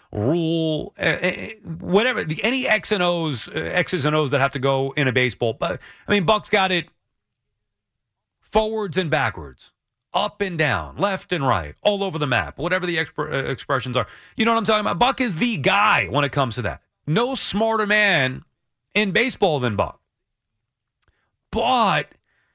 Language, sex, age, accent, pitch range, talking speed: English, male, 30-49, American, 125-200 Hz, 170 wpm